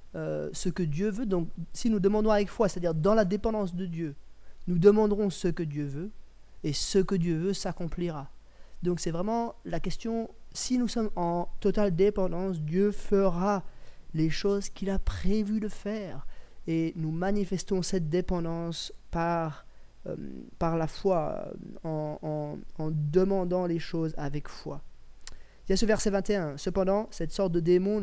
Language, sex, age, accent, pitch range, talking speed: French, male, 20-39, French, 165-200 Hz, 170 wpm